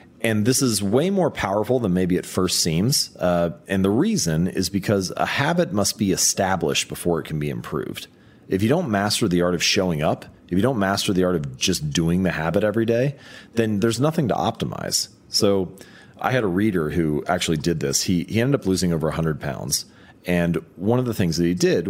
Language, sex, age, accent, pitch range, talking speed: English, male, 30-49, American, 85-110 Hz, 215 wpm